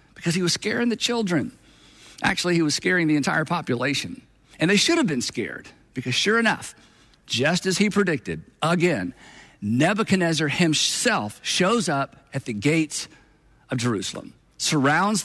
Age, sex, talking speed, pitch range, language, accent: 50-69, male, 145 wpm, 135-180 Hz, English, American